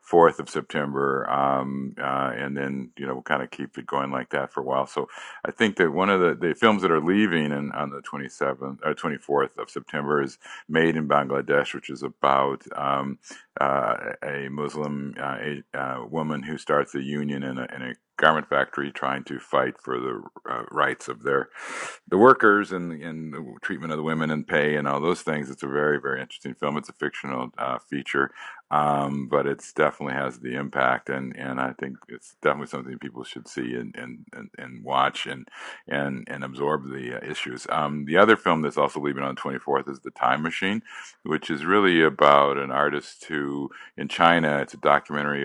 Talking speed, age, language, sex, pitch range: 205 wpm, 50-69, English, male, 70-75 Hz